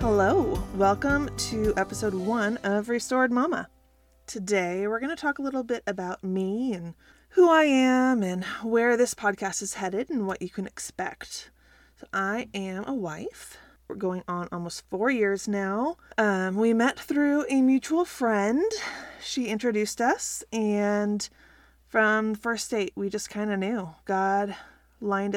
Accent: American